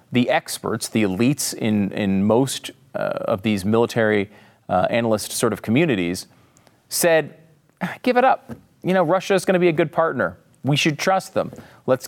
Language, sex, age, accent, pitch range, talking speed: English, male, 40-59, American, 110-165 Hz, 175 wpm